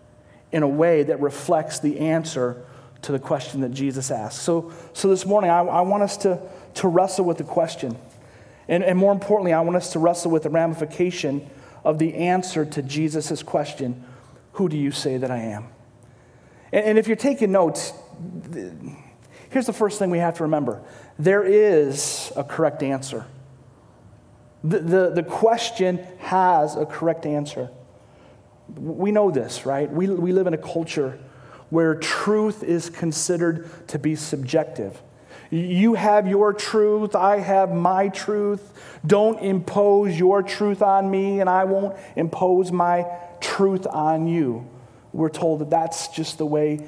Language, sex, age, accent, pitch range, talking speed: English, male, 40-59, American, 145-195 Hz, 165 wpm